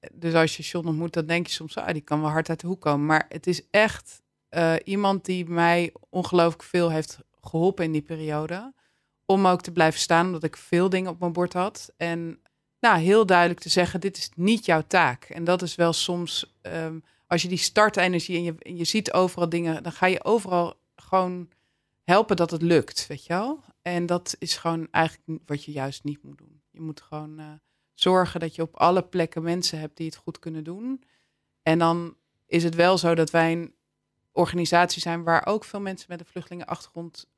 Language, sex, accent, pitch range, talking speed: Dutch, female, Dutch, 160-180 Hz, 210 wpm